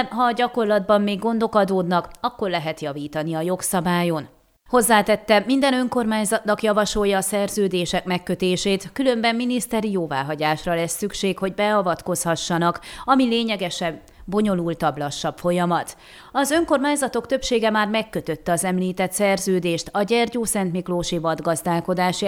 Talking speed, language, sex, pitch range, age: 115 wpm, Hungarian, female, 175-220 Hz, 30-49